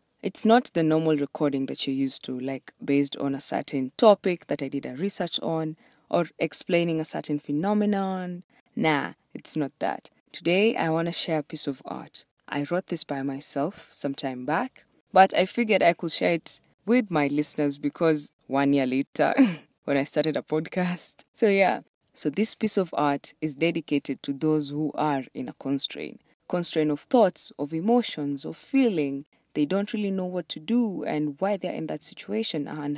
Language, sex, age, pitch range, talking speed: English, female, 20-39, 145-180 Hz, 185 wpm